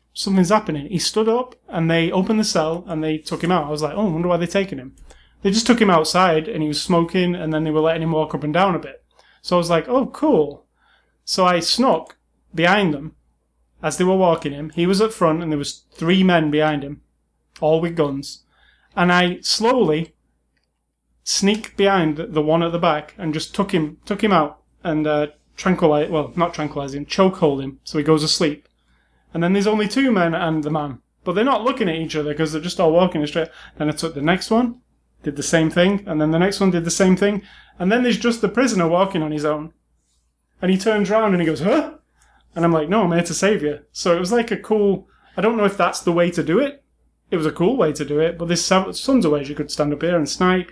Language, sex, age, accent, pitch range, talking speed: English, male, 30-49, British, 150-195 Hz, 250 wpm